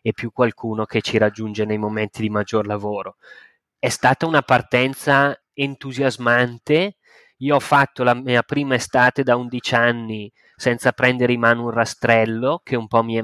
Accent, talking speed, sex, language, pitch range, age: native, 170 wpm, male, Italian, 120-145 Hz, 20-39